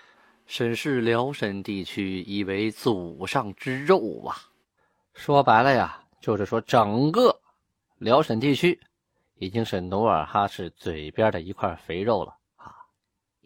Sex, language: male, Chinese